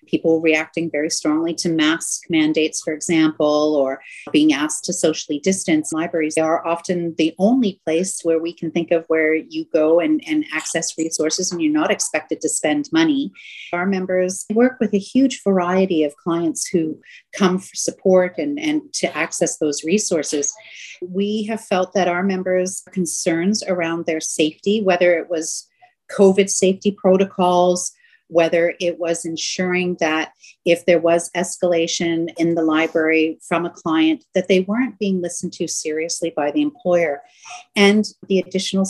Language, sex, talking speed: English, female, 160 wpm